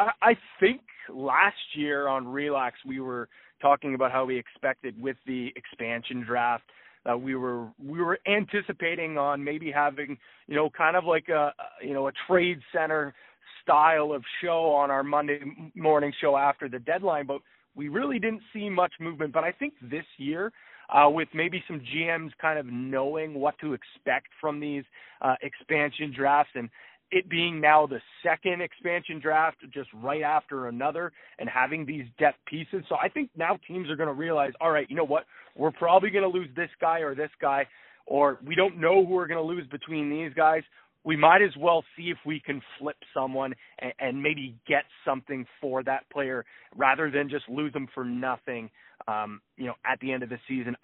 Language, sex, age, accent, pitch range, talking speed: English, male, 20-39, American, 135-165 Hz, 195 wpm